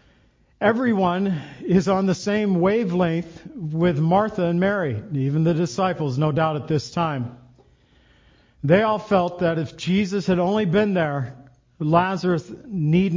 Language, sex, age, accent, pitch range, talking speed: English, male, 50-69, American, 155-195 Hz, 135 wpm